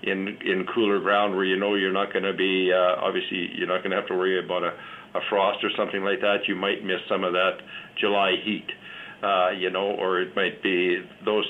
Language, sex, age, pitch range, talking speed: English, male, 50-69, 95-105 Hz, 235 wpm